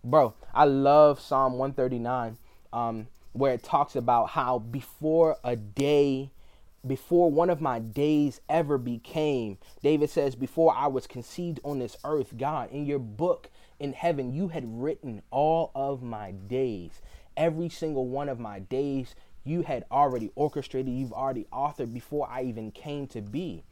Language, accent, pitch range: English, American, 120-150 Hz